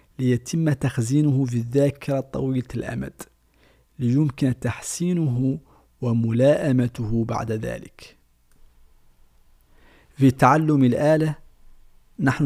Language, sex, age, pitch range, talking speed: Arabic, male, 50-69, 115-140 Hz, 70 wpm